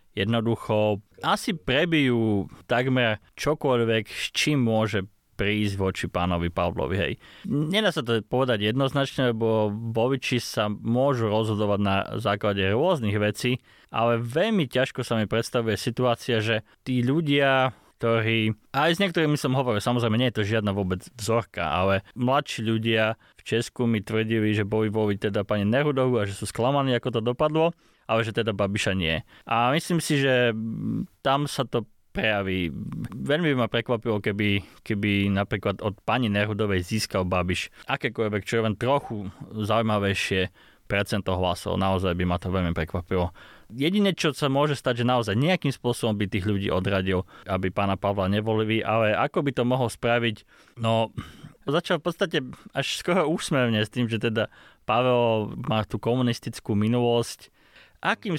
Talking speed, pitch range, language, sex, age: 150 wpm, 105-125 Hz, Slovak, male, 20-39